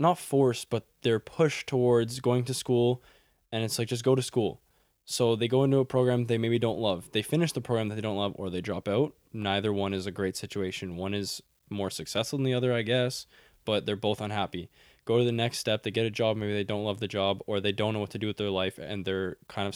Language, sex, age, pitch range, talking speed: English, male, 10-29, 100-115 Hz, 260 wpm